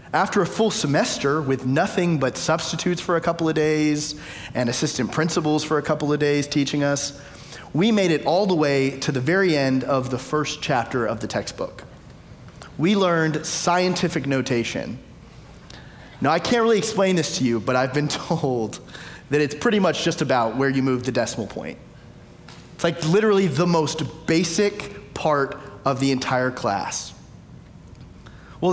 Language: English